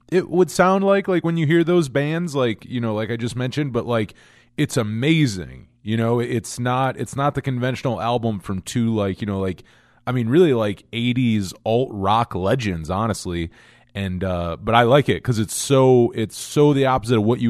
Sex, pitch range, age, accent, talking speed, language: male, 100-130 Hz, 20-39, American, 210 wpm, English